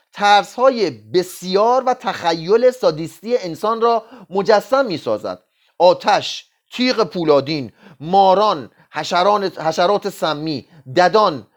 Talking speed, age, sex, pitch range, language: 95 wpm, 30-49, male, 185-245 Hz, Persian